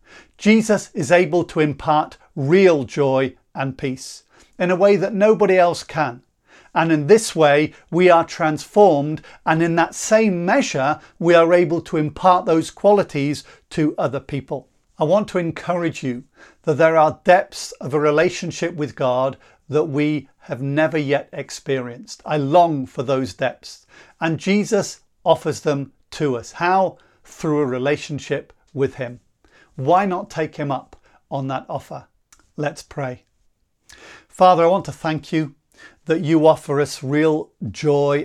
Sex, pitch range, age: male, 140-165 Hz, 40-59